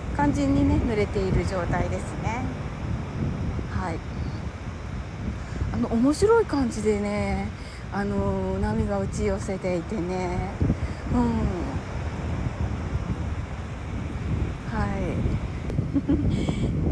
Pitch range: 95-130 Hz